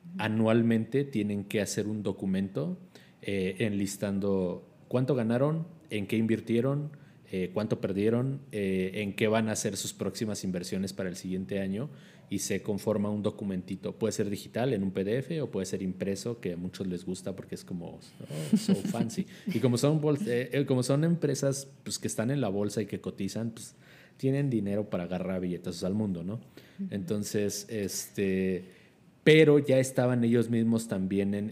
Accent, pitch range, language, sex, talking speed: Mexican, 95-125 Hz, Spanish, male, 170 wpm